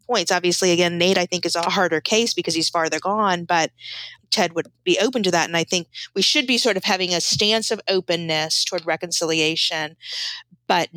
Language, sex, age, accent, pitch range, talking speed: English, female, 40-59, American, 165-195 Hz, 195 wpm